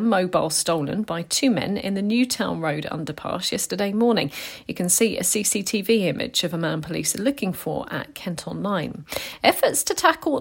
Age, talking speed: 40-59, 180 wpm